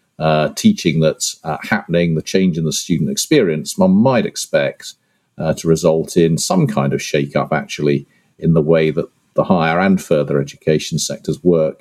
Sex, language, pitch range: male, English, 75-100 Hz